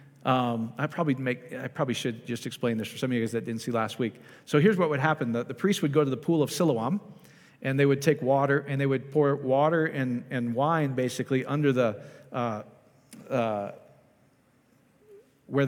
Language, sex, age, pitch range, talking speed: English, male, 40-59, 125-150 Hz, 205 wpm